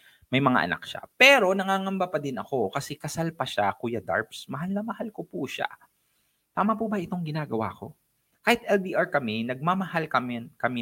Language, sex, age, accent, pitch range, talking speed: English, male, 20-39, Filipino, 115-165 Hz, 185 wpm